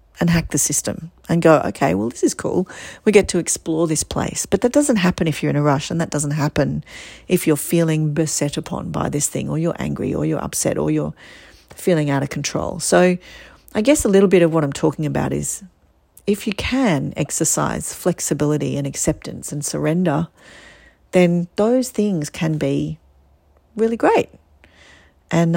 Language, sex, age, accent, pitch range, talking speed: English, female, 40-59, Australian, 150-185 Hz, 185 wpm